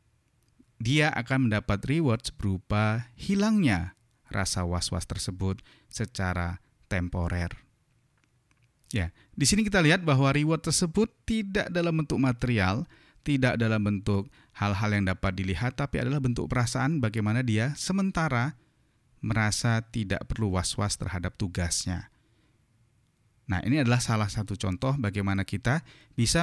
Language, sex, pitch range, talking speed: Indonesian, male, 100-130 Hz, 120 wpm